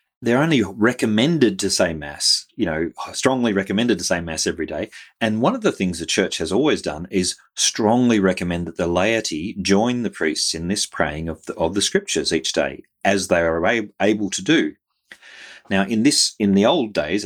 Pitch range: 85-105 Hz